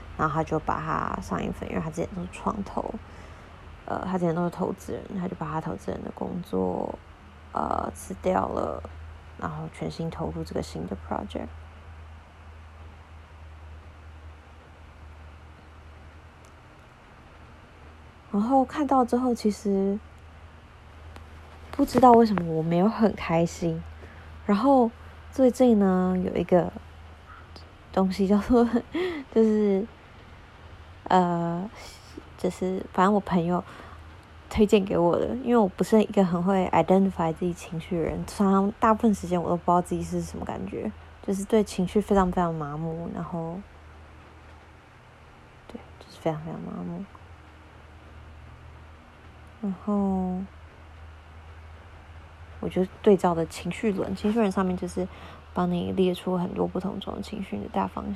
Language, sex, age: Chinese, female, 20-39